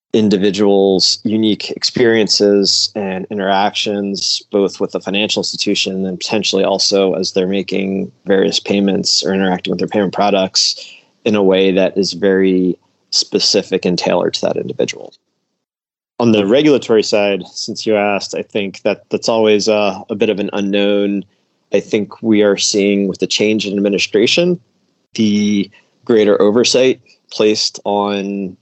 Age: 20-39